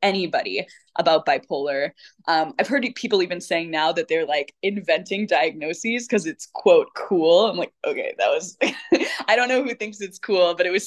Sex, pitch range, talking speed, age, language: female, 160-210 Hz, 190 wpm, 10-29, English